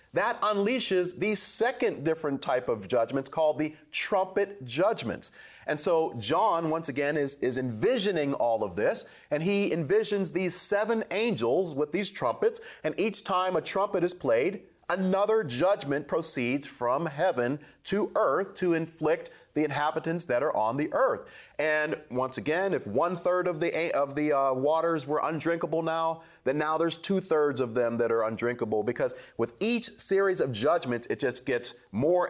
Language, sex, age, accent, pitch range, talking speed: English, male, 30-49, American, 150-195 Hz, 165 wpm